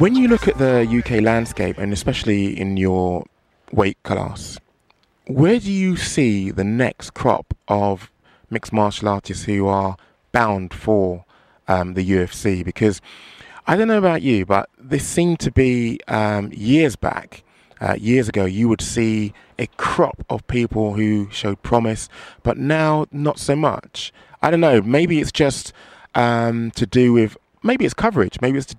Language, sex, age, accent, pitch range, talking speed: English, male, 20-39, British, 100-125 Hz, 165 wpm